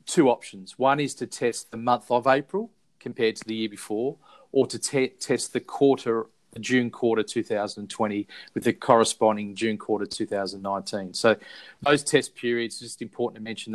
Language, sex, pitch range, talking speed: English, male, 110-130 Hz, 160 wpm